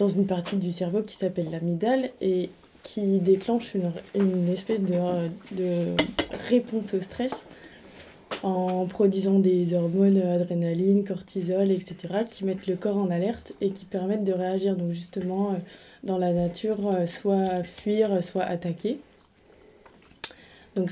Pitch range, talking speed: 180-200 Hz, 135 wpm